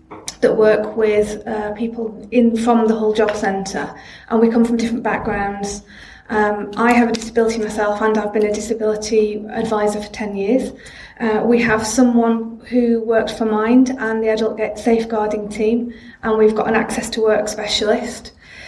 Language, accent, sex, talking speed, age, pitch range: English, British, female, 175 wpm, 30-49, 215-240 Hz